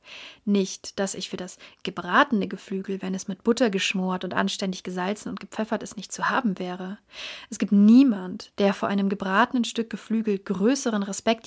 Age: 30-49